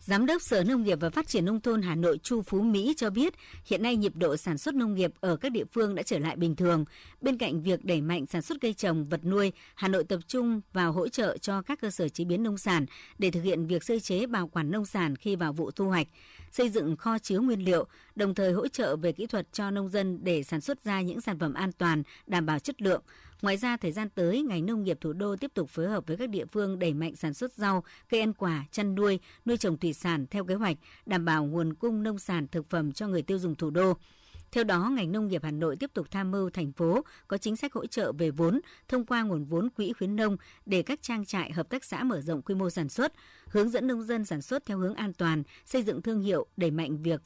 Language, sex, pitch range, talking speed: Vietnamese, male, 170-220 Hz, 265 wpm